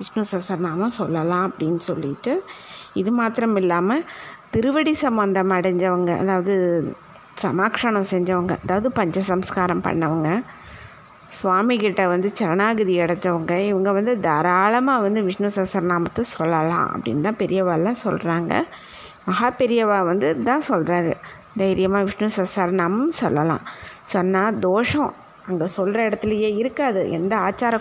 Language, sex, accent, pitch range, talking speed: Tamil, female, native, 180-220 Hz, 105 wpm